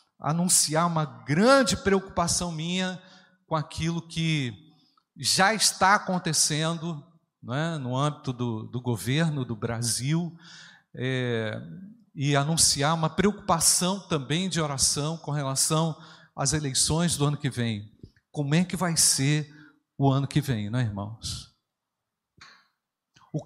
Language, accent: Portuguese, Brazilian